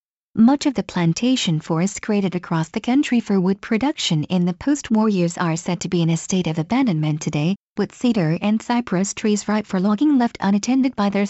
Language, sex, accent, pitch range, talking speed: English, female, American, 180-235 Hz, 200 wpm